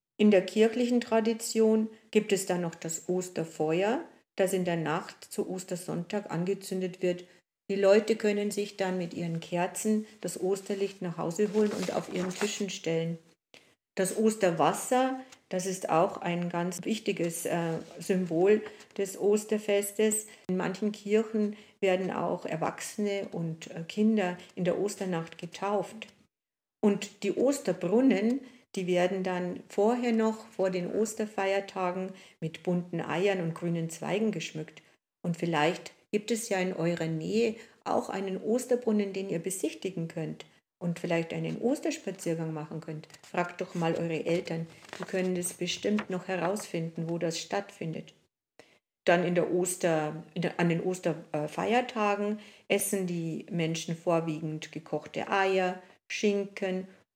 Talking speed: 130 wpm